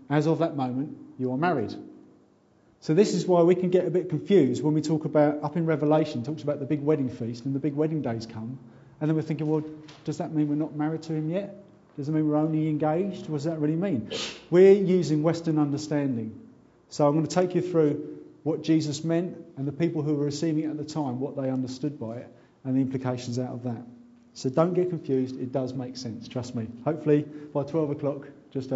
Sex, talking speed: male, 230 wpm